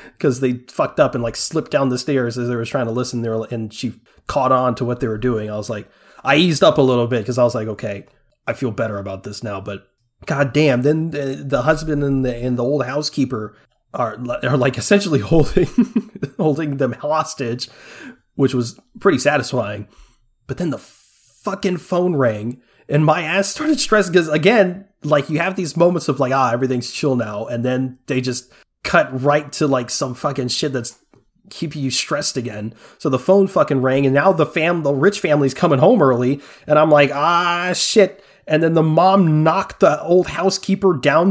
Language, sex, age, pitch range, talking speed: English, male, 30-49, 125-175 Hz, 205 wpm